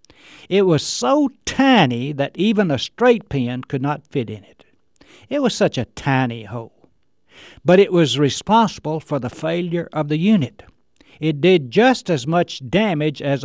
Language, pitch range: English, 125-185 Hz